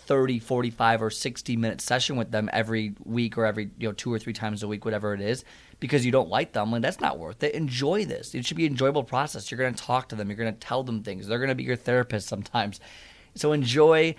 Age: 30-49